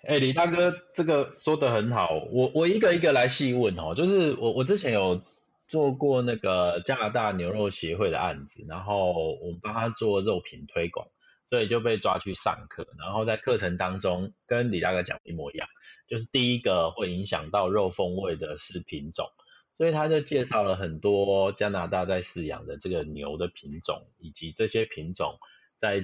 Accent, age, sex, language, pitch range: native, 30-49, male, Chinese, 90-130 Hz